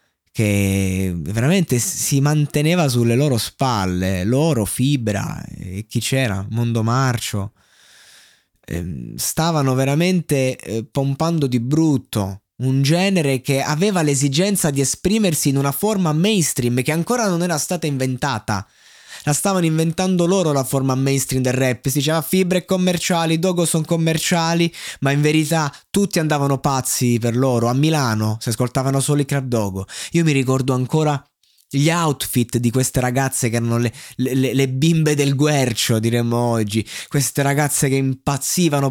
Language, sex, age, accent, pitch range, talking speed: Italian, male, 20-39, native, 125-160 Hz, 140 wpm